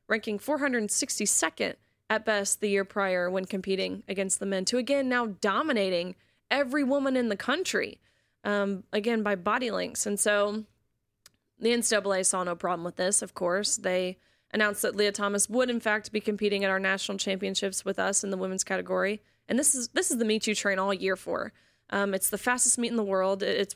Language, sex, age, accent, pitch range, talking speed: English, female, 20-39, American, 195-220 Hz, 195 wpm